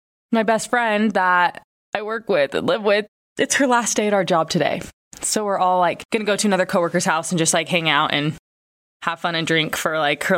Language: English